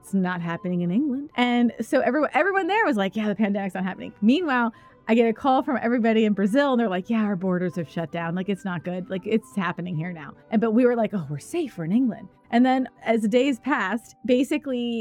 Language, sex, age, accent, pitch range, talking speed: English, female, 20-39, American, 200-250 Hz, 250 wpm